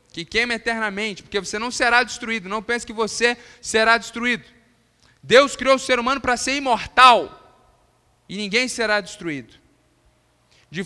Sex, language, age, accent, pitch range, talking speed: male, Portuguese, 20-39, Brazilian, 155-220 Hz, 150 wpm